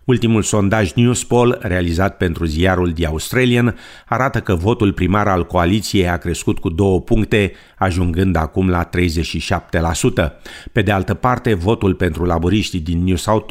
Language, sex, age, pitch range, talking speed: Romanian, male, 50-69, 90-110 Hz, 150 wpm